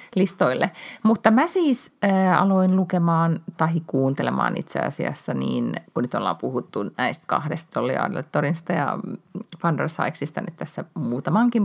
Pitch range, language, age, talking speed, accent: 130-185 Hz, Finnish, 30-49, 130 wpm, native